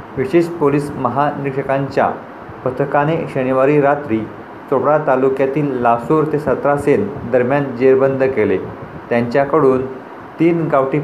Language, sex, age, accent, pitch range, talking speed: Marathi, male, 40-59, native, 130-150 Hz, 90 wpm